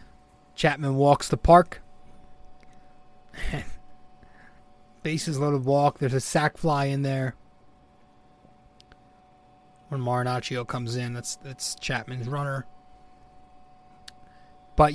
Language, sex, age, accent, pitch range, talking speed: English, male, 30-49, American, 140-160 Hz, 90 wpm